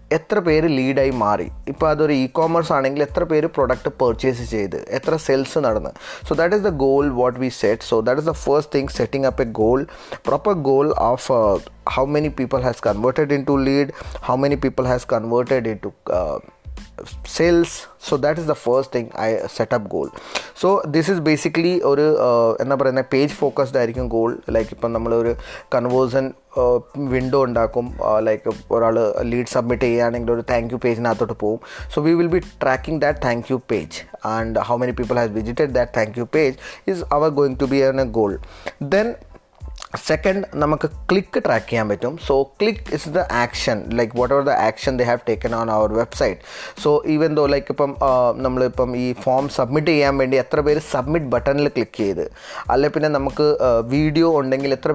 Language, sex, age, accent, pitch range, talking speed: Malayalam, male, 20-39, native, 120-150 Hz, 190 wpm